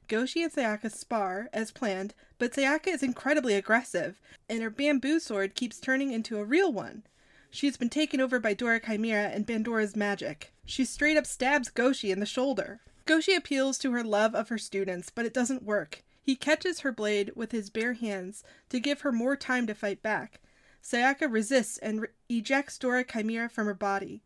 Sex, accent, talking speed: female, American, 190 wpm